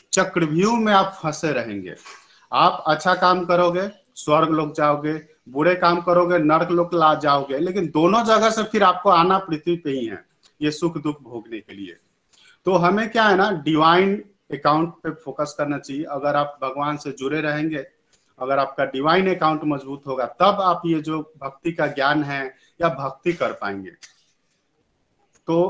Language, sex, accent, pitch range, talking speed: Hindi, male, native, 150-180 Hz, 170 wpm